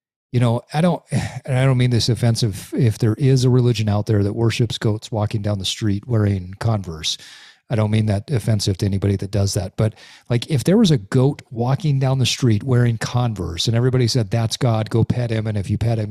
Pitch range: 115-150 Hz